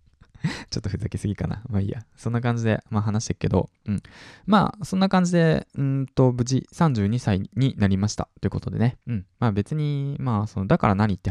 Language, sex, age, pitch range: Japanese, male, 20-39, 100-130 Hz